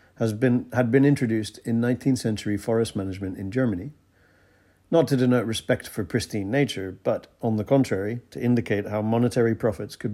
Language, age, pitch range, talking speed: English, 50-69, 100-120 Hz, 160 wpm